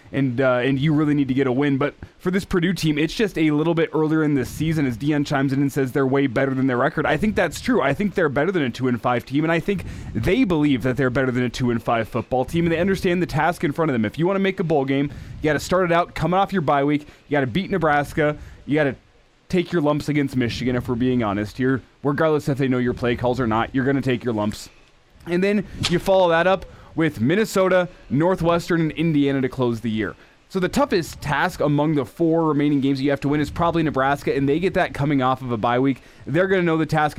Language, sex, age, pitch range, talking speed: English, male, 20-39, 130-160 Hz, 280 wpm